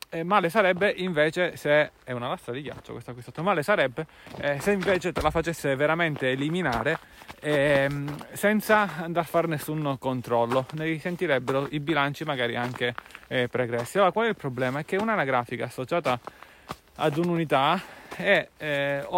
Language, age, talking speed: Italian, 30-49, 160 wpm